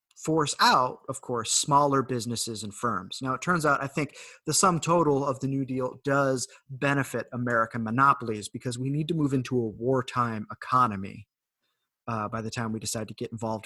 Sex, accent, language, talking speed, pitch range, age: male, American, English, 190 wpm, 105-135 Hz, 30-49